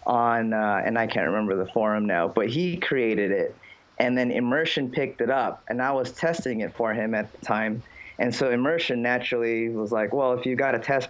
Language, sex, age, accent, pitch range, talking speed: English, male, 20-39, American, 110-130 Hz, 220 wpm